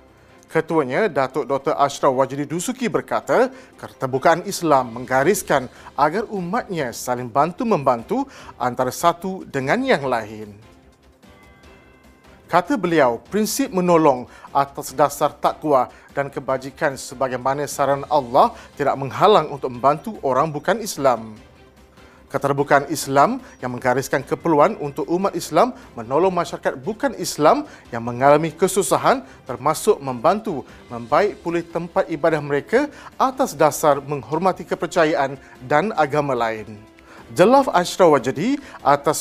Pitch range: 135-175 Hz